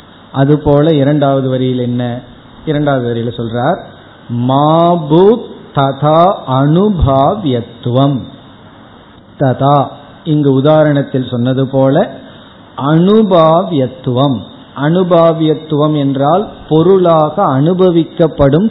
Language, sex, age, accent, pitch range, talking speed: Tamil, male, 50-69, native, 130-165 Hz, 65 wpm